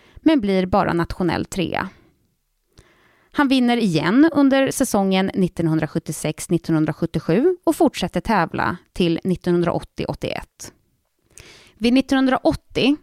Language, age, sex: Swedish, 20-39, female